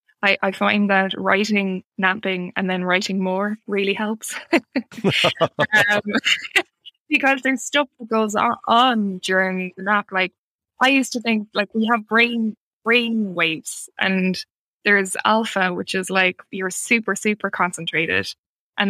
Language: English